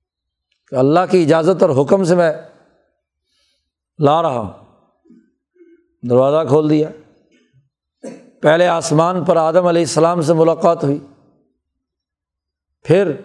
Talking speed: 110 wpm